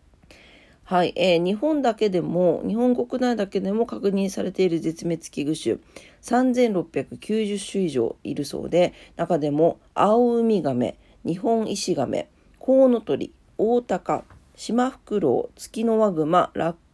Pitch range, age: 160-220 Hz, 40-59